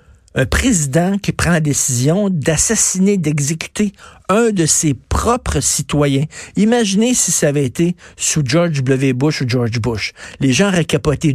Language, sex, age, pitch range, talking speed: French, male, 50-69, 125-165 Hz, 155 wpm